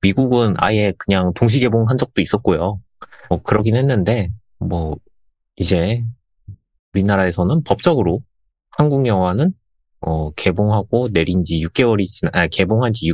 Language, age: Korean, 30-49